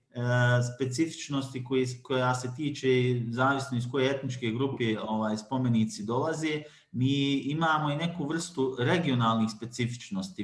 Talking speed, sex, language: 110 wpm, male, English